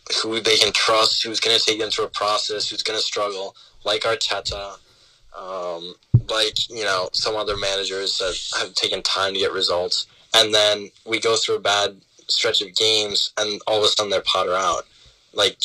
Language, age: English, 20-39